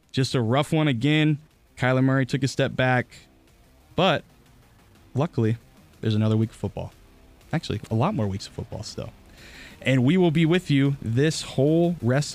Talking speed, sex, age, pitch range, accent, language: 170 wpm, male, 20-39, 110-150 Hz, American, English